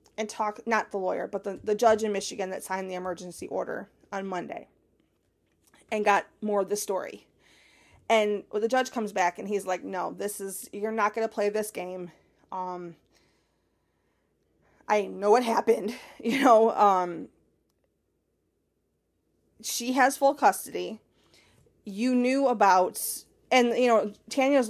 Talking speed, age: 150 wpm, 20-39